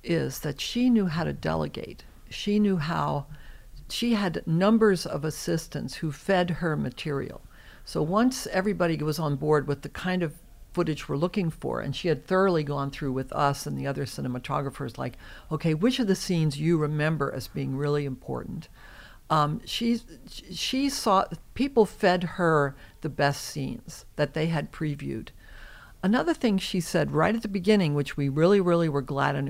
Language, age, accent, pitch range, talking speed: English, 60-79, American, 145-185 Hz, 175 wpm